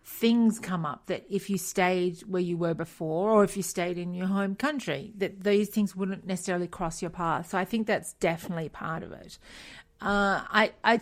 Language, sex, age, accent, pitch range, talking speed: English, female, 40-59, Australian, 165-200 Hz, 205 wpm